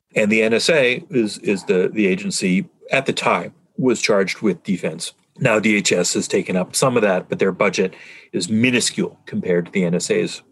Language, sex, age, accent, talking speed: English, male, 40-59, American, 185 wpm